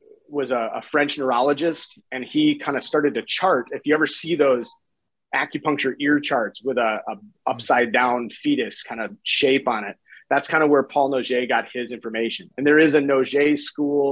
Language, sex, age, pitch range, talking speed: English, male, 30-49, 125-155 Hz, 195 wpm